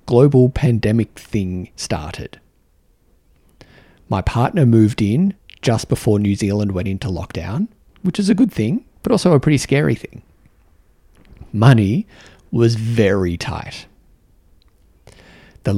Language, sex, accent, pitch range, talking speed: English, male, Australian, 95-130 Hz, 120 wpm